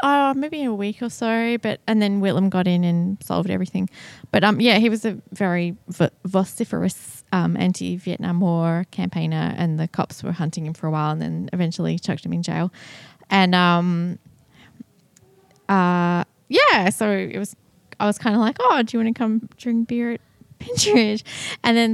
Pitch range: 165-215 Hz